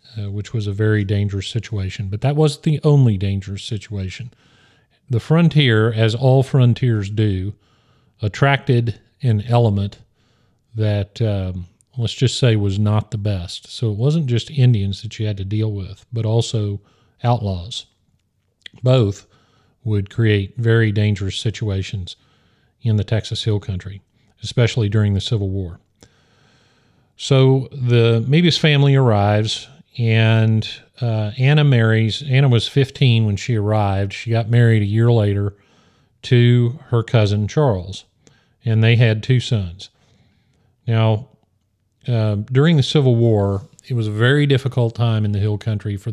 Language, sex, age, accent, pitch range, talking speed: English, male, 40-59, American, 105-125 Hz, 140 wpm